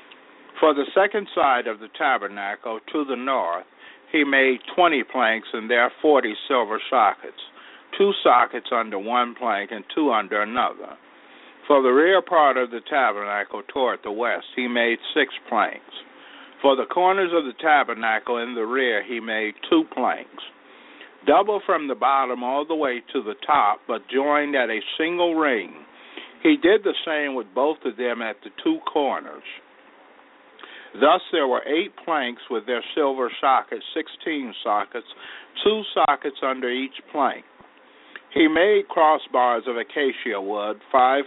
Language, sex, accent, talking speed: English, male, American, 155 wpm